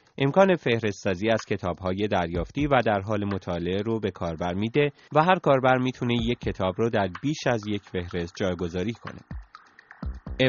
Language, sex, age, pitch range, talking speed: Persian, male, 30-49, 95-130 Hz, 160 wpm